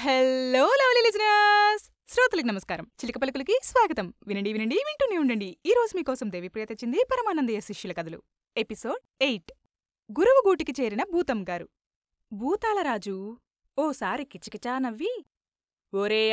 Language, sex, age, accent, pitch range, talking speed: Telugu, female, 20-39, native, 200-270 Hz, 100 wpm